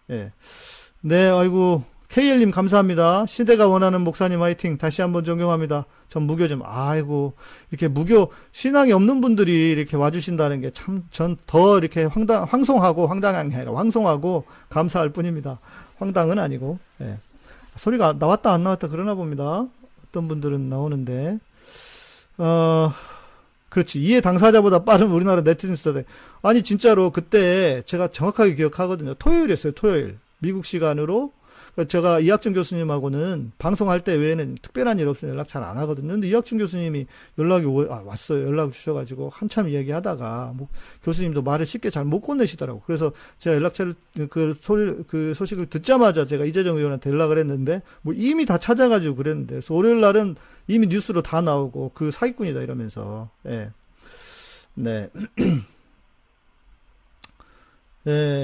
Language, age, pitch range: Korean, 40-59, 145-200 Hz